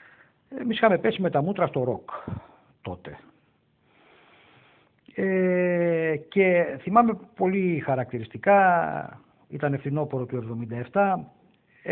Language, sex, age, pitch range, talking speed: Greek, male, 50-69, 125-185 Hz, 90 wpm